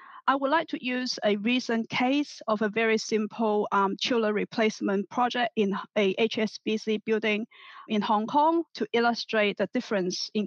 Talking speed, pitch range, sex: 160 wpm, 210-240 Hz, female